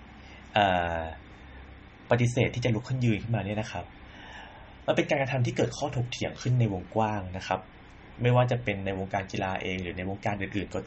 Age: 20-39